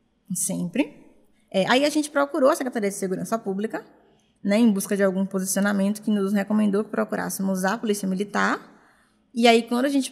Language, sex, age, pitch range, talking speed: Portuguese, female, 10-29, 195-230 Hz, 180 wpm